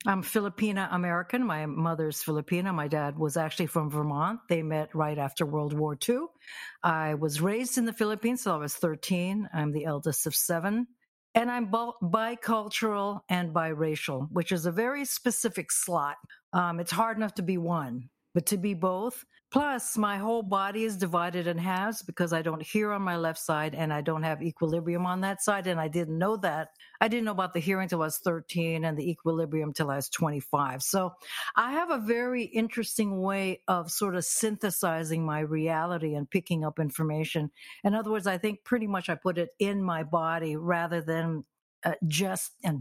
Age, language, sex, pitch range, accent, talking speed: 60-79, English, female, 160-205 Hz, American, 190 wpm